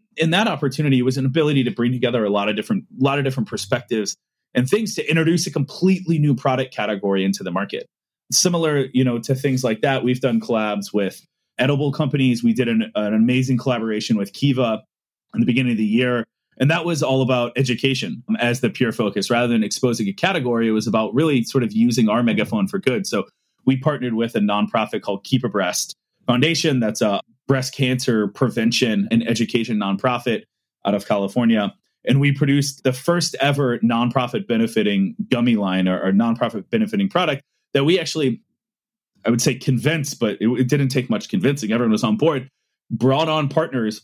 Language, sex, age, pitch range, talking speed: English, male, 30-49, 115-150 Hz, 185 wpm